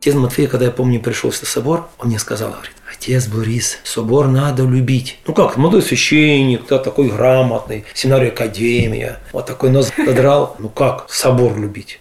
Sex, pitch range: male, 120-150 Hz